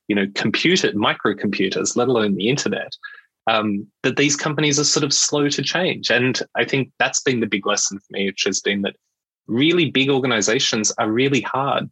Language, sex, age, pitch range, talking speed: English, male, 20-39, 105-150 Hz, 190 wpm